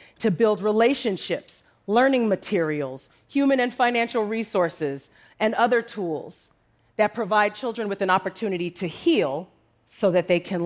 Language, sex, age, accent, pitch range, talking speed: English, female, 30-49, American, 180-240 Hz, 135 wpm